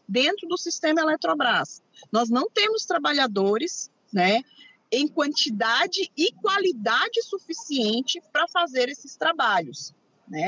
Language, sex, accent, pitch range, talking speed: Portuguese, female, Brazilian, 225-310 Hz, 110 wpm